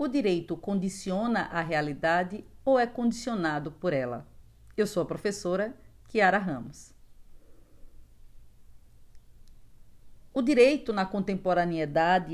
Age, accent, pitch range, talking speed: 50-69, Brazilian, 150-185 Hz, 95 wpm